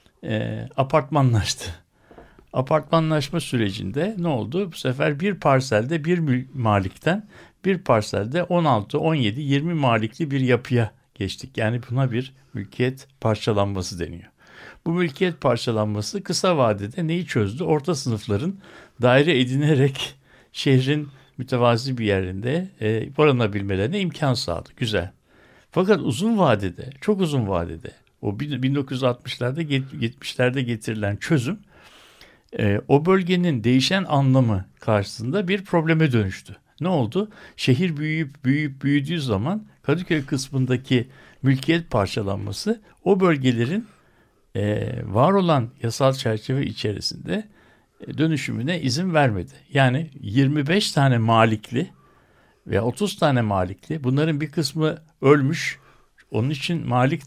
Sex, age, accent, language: male, 60-79, native, Turkish